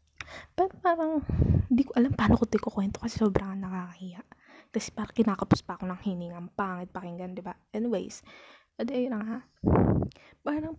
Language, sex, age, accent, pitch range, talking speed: Filipino, female, 20-39, native, 200-260 Hz, 160 wpm